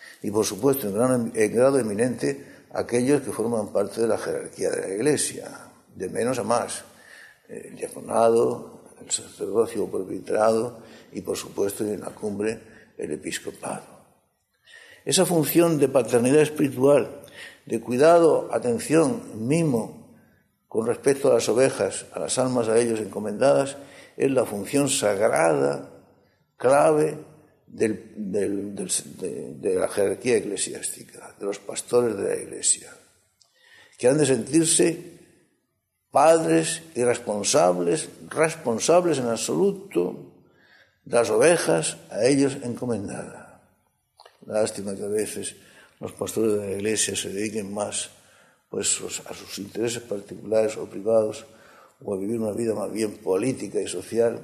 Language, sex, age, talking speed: Spanish, male, 60-79, 130 wpm